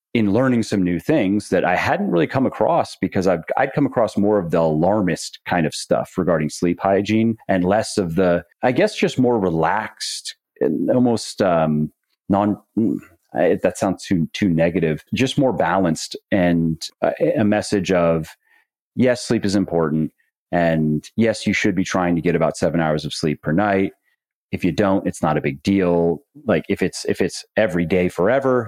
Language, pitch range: English, 80-100 Hz